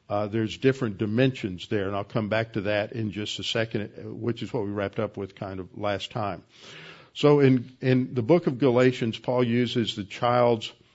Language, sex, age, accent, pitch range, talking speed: English, male, 50-69, American, 105-125 Hz, 205 wpm